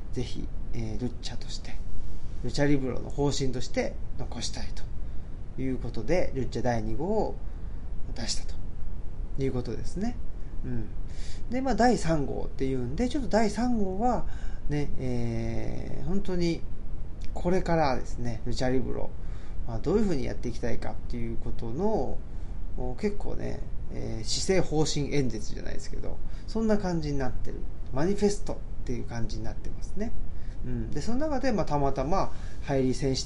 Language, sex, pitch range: Japanese, male, 110-160 Hz